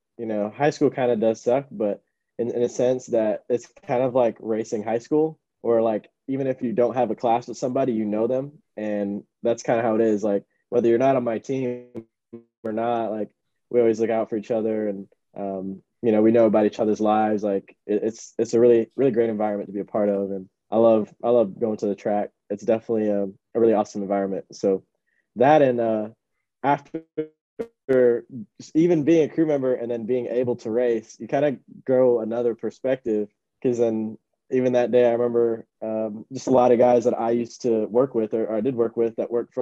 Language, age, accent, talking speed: English, 20-39, American, 225 wpm